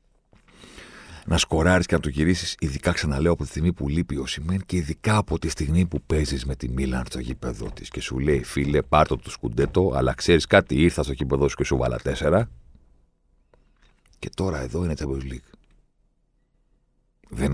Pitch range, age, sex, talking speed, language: 70-100 Hz, 50-69, male, 185 wpm, Greek